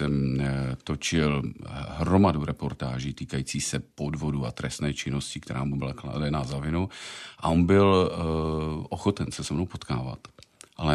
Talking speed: 130 wpm